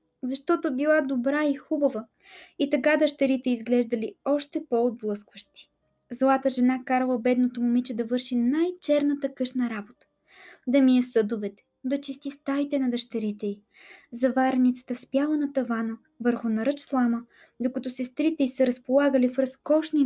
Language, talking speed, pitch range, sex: Bulgarian, 135 wpm, 245-290 Hz, female